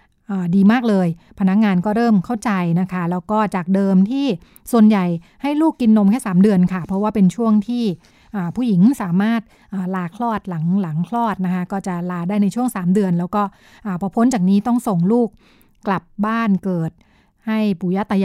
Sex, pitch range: female, 185-215 Hz